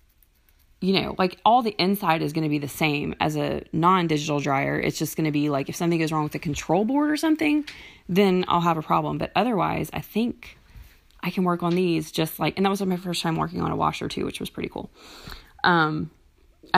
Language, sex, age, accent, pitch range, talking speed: English, female, 20-39, American, 150-180 Hz, 225 wpm